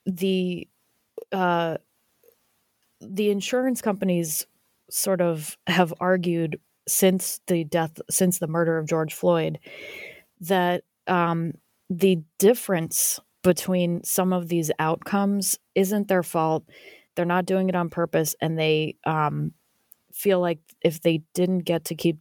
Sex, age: female, 20-39